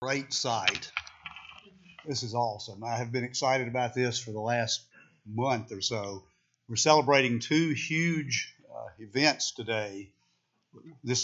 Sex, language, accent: male, English, American